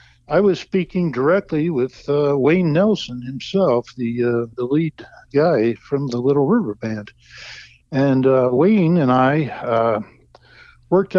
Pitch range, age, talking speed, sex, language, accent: 120-155 Hz, 60-79, 140 wpm, male, English, American